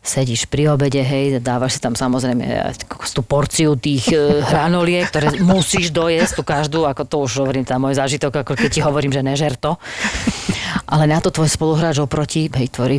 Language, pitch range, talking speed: Slovak, 135-155 Hz, 180 wpm